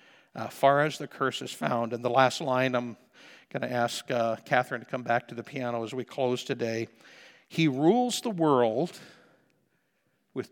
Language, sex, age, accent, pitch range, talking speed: English, male, 60-79, American, 120-170 Hz, 175 wpm